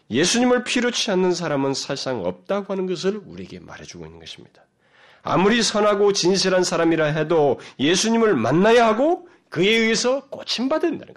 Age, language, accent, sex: 40-59, Korean, native, male